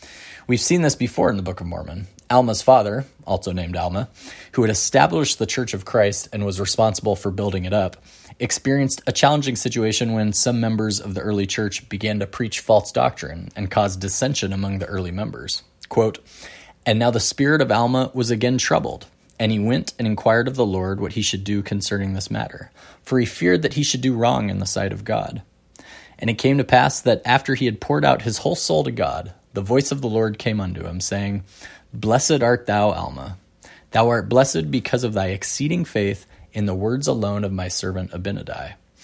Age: 20-39